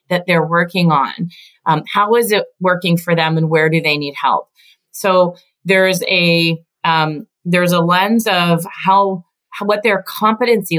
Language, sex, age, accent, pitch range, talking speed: English, female, 30-49, American, 165-205 Hz, 165 wpm